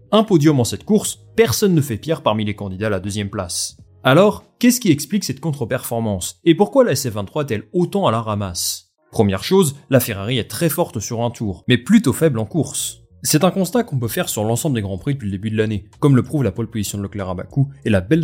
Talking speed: 245 wpm